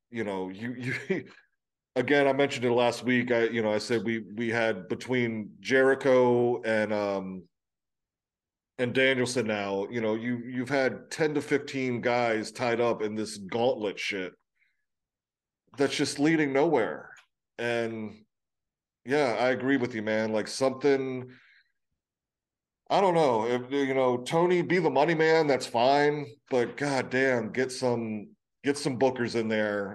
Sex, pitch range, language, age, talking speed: male, 115-135 Hz, English, 40-59, 150 wpm